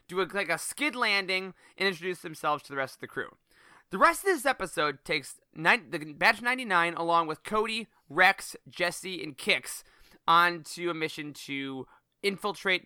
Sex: male